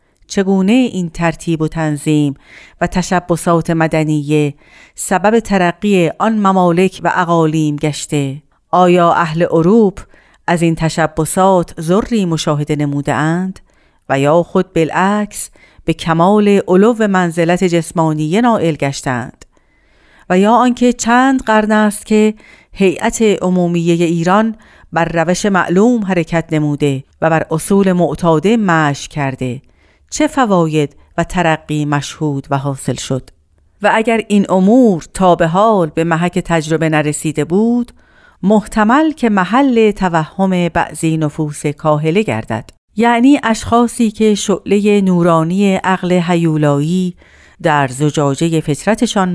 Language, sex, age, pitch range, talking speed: Persian, female, 40-59, 155-205 Hz, 115 wpm